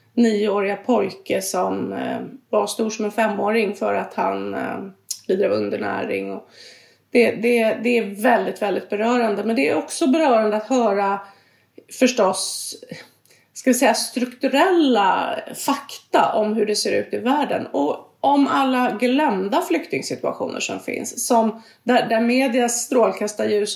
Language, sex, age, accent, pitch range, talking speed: English, female, 30-49, Swedish, 205-240 Hz, 140 wpm